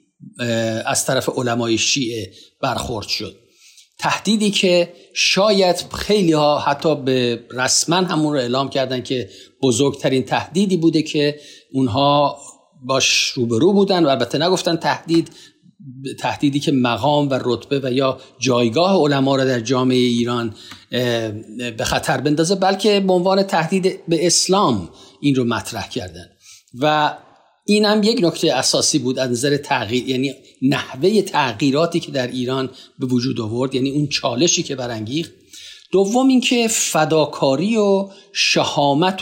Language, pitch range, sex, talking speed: Persian, 130-175 Hz, male, 130 wpm